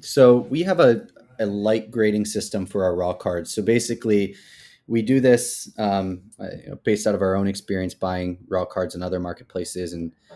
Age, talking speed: 20-39, 180 wpm